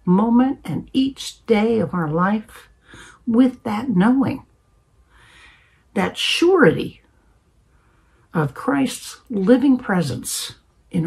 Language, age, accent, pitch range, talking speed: English, 60-79, American, 150-225 Hz, 90 wpm